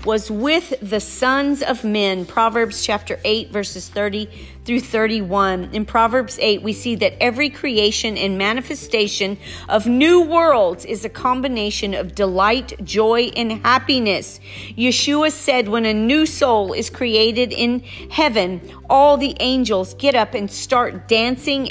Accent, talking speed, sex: American, 145 wpm, female